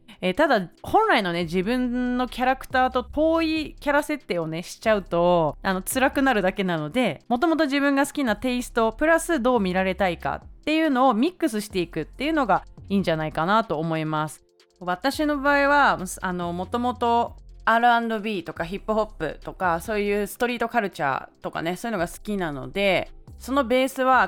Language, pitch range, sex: Japanese, 170-255 Hz, female